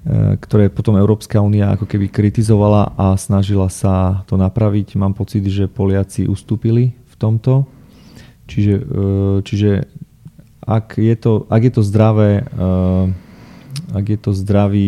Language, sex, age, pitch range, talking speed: Slovak, male, 30-49, 95-105 Hz, 125 wpm